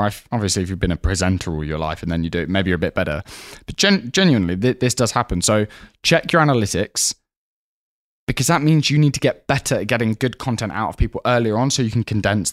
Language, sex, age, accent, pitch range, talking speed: English, male, 10-29, British, 100-125 Hz, 235 wpm